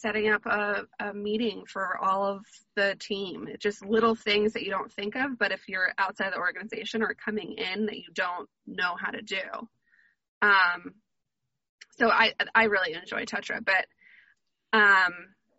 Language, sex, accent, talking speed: English, female, American, 165 wpm